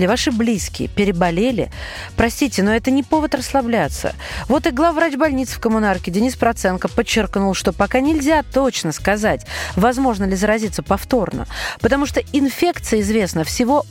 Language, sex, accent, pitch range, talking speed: Russian, female, native, 205-275 Hz, 140 wpm